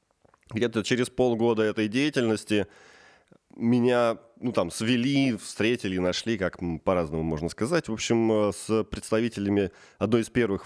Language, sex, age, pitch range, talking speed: Russian, male, 20-39, 95-115 Hz, 120 wpm